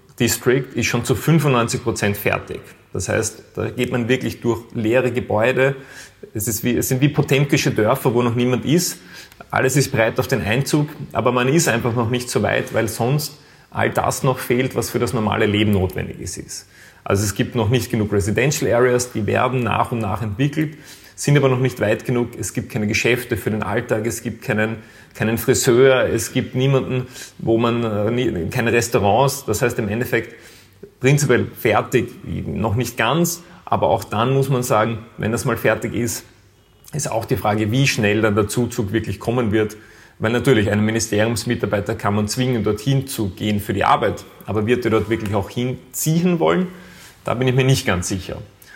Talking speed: 190 wpm